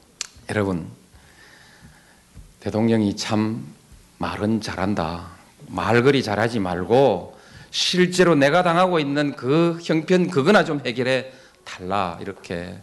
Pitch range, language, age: 100-155 Hz, Korean, 40-59